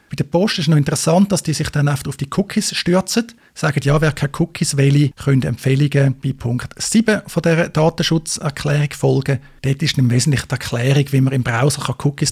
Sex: male